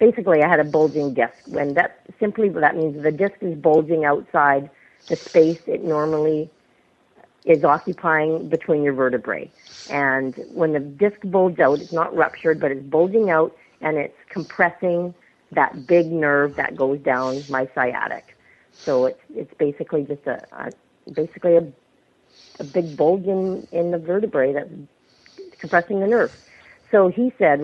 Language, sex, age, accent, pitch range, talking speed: English, female, 50-69, American, 145-180 Hz, 155 wpm